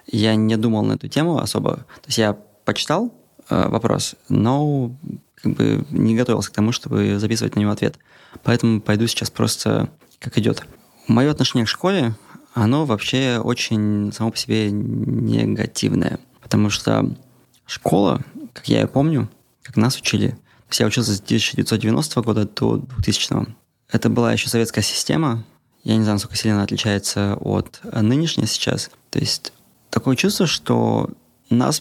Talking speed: 150 wpm